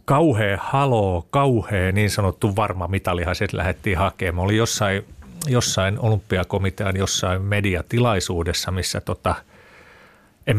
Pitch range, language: 90-115 Hz, Finnish